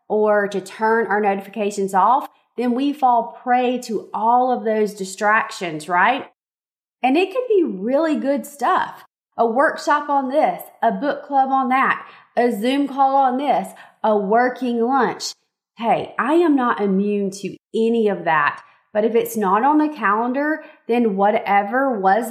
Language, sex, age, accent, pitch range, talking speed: English, female, 30-49, American, 200-270 Hz, 160 wpm